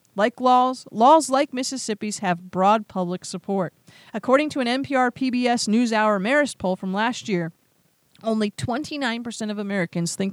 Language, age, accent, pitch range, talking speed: English, 40-59, American, 180-240 Hz, 140 wpm